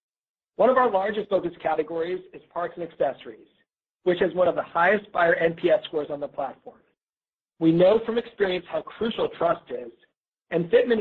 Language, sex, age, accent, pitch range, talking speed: English, male, 50-69, American, 155-200 Hz, 175 wpm